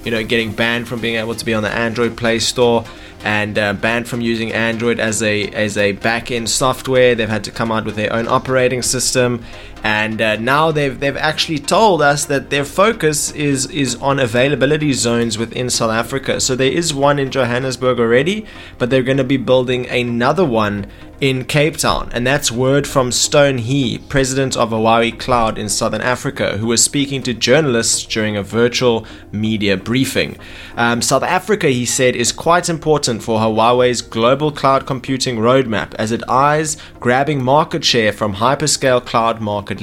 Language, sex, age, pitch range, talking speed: English, male, 20-39, 110-135 Hz, 180 wpm